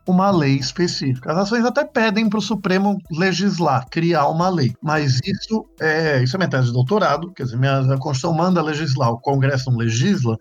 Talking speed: 190 wpm